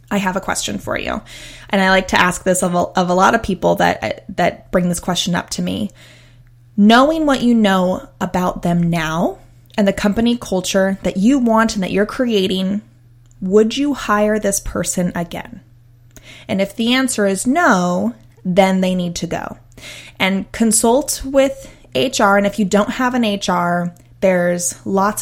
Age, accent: 20-39, American